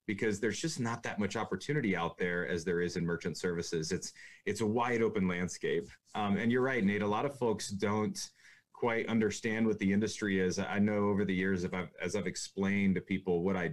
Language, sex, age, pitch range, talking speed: English, male, 30-49, 95-120 Hz, 215 wpm